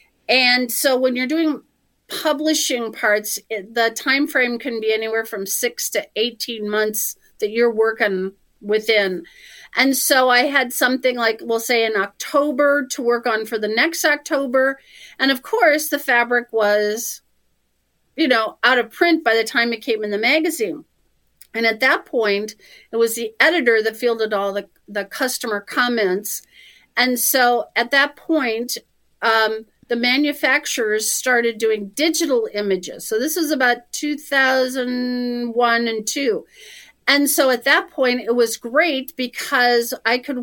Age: 40-59